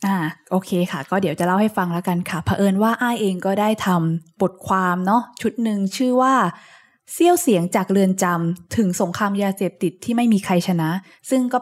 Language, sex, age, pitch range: Thai, female, 20-39, 175-220 Hz